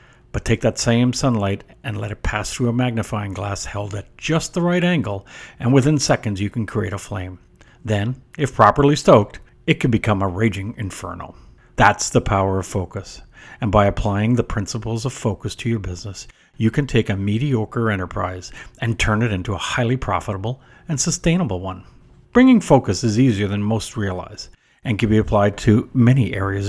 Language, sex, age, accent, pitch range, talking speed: English, male, 50-69, American, 100-130 Hz, 185 wpm